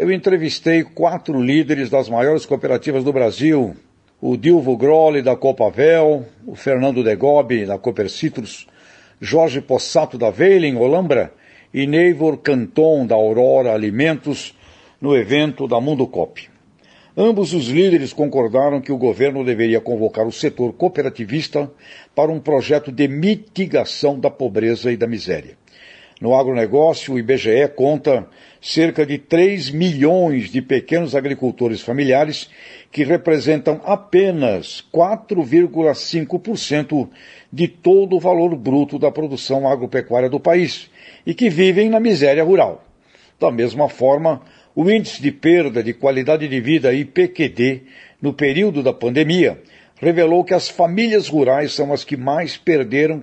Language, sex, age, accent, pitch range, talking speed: Portuguese, male, 60-79, Brazilian, 130-165 Hz, 130 wpm